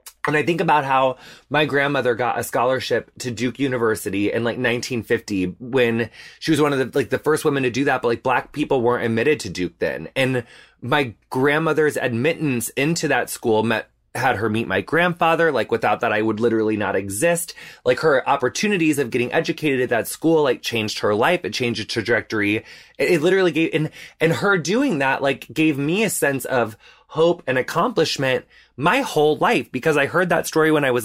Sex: male